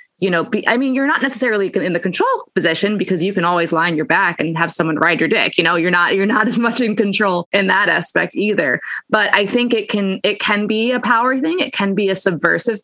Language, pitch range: English, 175-230 Hz